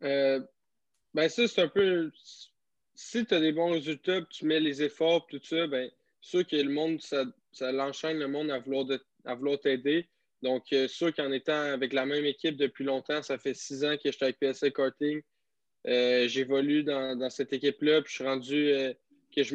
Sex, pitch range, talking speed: male, 130-150 Hz, 205 wpm